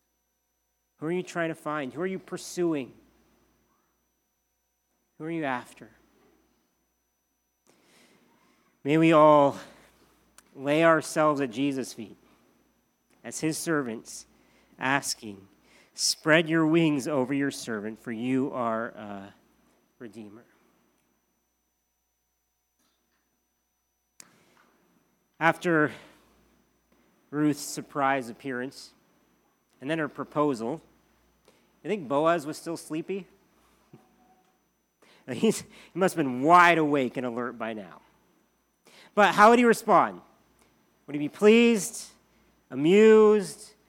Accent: American